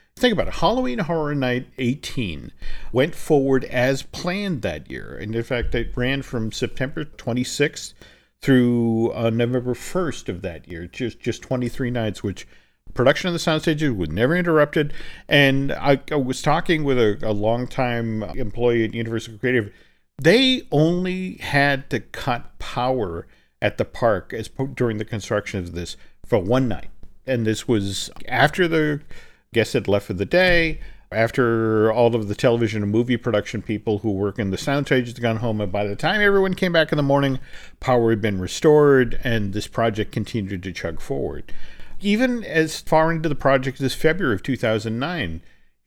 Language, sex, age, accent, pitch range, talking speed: English, male, 50-69, American, 105-145 Hz, 175 wpm